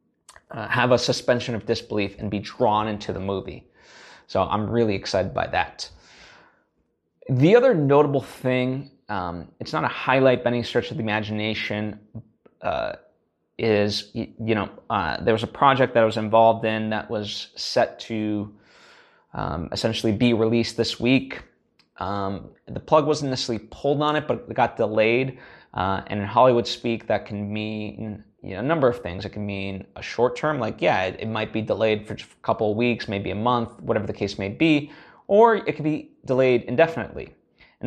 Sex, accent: male, American